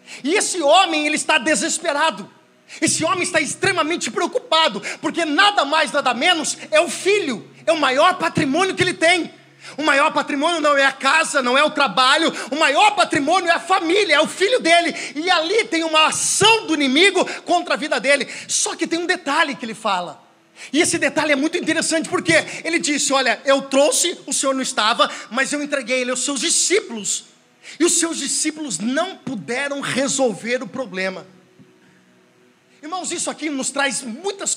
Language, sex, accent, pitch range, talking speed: Portuguese, male, Brazilian, 270-335 Hz, 180 wpm